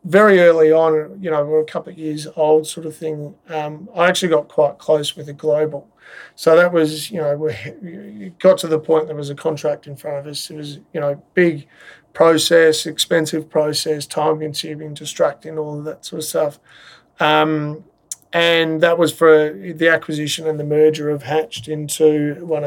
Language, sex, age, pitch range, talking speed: English, male, 30-49, 150-165 Hz, 190 wpm